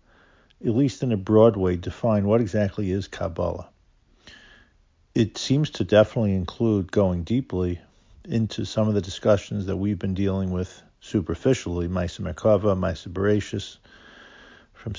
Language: English